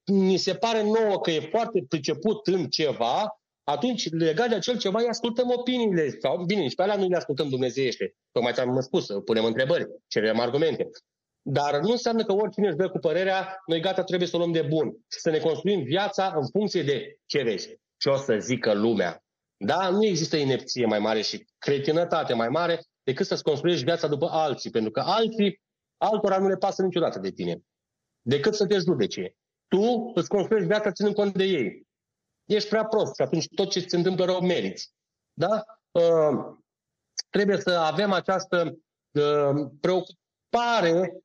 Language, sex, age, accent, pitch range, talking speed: Romanian, male, 30-49, native, 160-200 Hz, 175 wpm